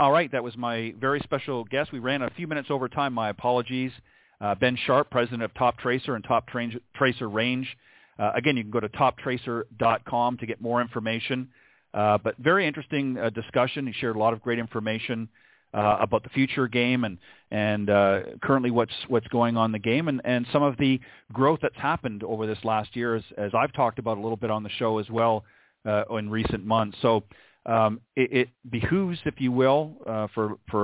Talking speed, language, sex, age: 210 wpm, English, male, 40-59